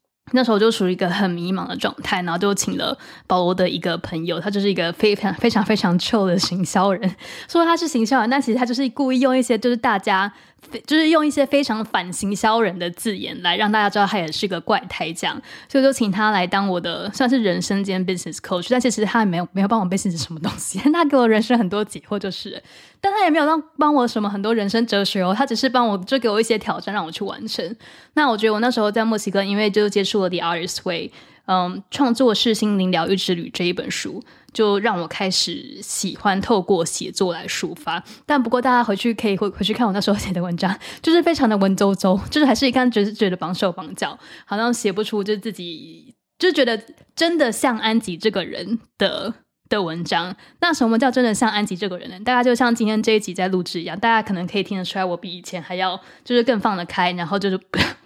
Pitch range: 185-240 Hz